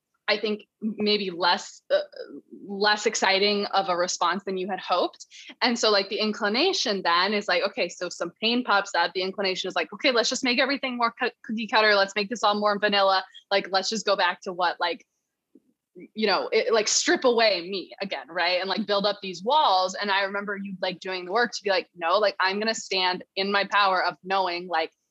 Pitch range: 180-220 Hz